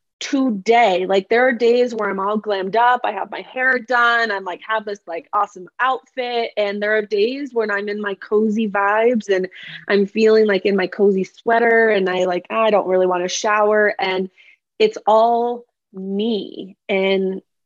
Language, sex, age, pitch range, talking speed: English, female, 20-39, 190-225 Hz, 185 wpm